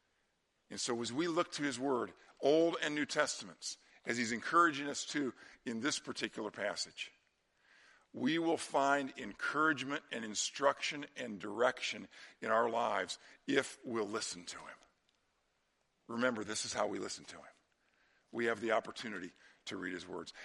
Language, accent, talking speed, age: English, American, 155 wpm, 50-69